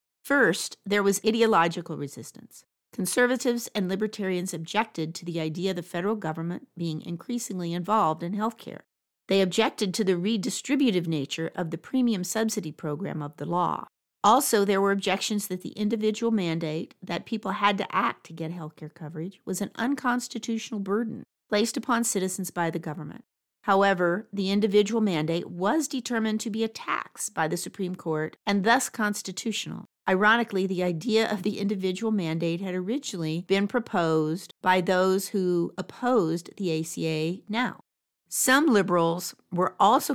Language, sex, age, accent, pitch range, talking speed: English, female, 50-69, American, 170-220 Hz, 155 wpm